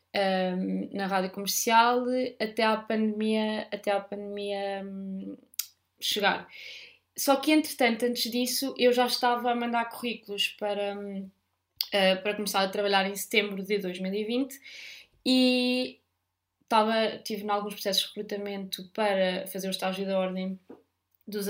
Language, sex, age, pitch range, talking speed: Portuguese, female, 20-39, 205-245 Hz, 115 wpm